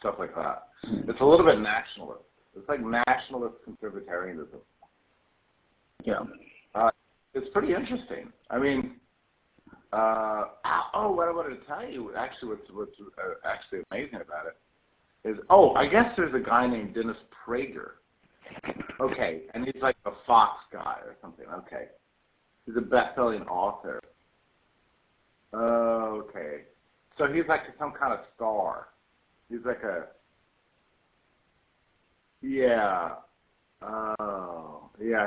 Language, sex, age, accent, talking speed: English, male, 60-79, American, 125 wpm